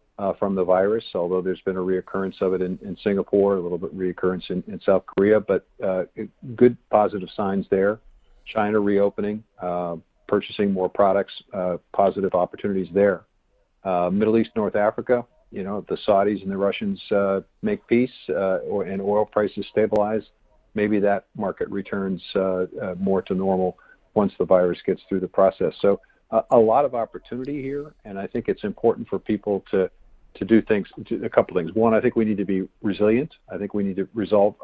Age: 50-69